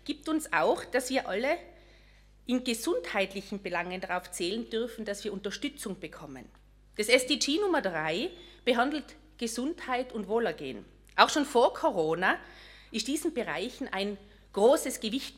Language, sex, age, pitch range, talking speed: German, female, 40-59, 200-285 Hz, 135 wpm